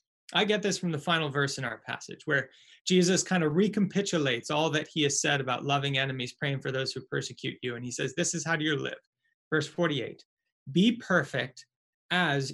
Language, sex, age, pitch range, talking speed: English, male, 30-49, 140-195 Hz, 200 wpm